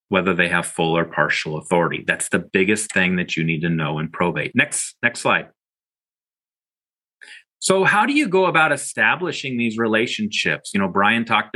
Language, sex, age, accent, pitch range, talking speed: English, male, 40-59, American, 110-140 Hz, 175 wpm